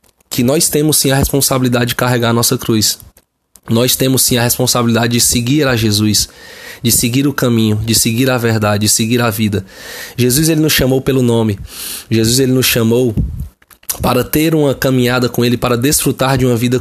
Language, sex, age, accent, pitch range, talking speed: Portuguese, male, 20-39, Brazilian, 115-135 Hz, 180 wpm